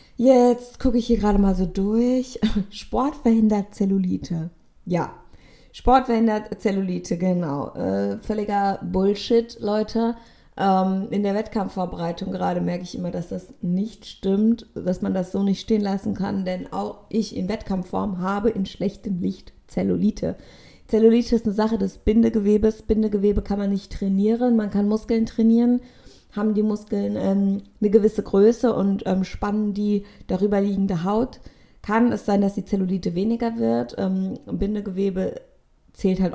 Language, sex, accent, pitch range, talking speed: German, female, German, 185-220 Hz, 150 wpm